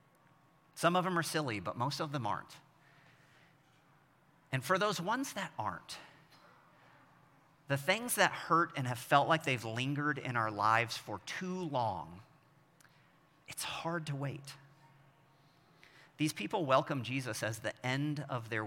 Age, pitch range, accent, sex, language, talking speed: 40-59, 135-160 Hz, American, male, English, 145 wpm